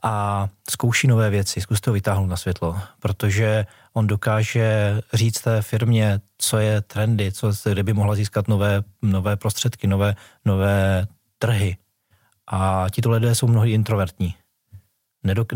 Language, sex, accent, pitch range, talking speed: Czech, male, native, 100-110 Hz, 130 wpm